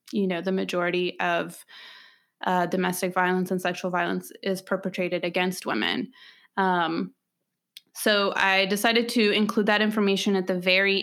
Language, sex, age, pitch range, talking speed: English, female, 20-39, 180-205 Hz, 140 wpm